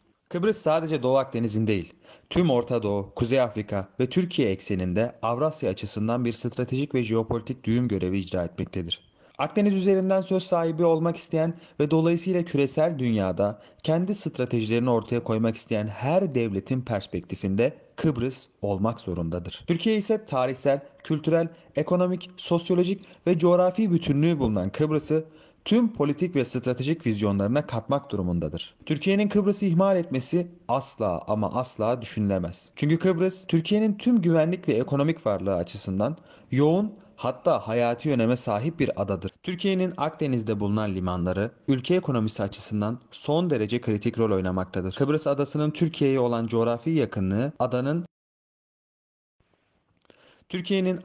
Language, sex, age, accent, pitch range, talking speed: Turkish, male, 30-49, native, 110-165 Hz, 125 wpm